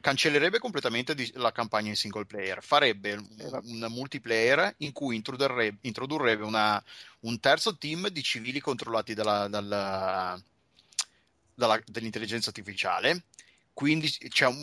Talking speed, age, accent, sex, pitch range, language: 110 wpm, 30-49, native, male, 110-140 Hz, Italian